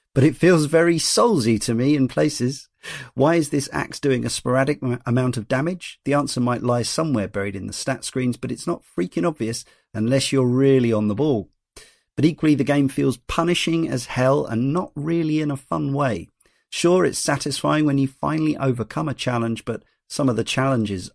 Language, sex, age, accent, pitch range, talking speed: English, male, 40-59, British, 115-140 Hz, 195 wpm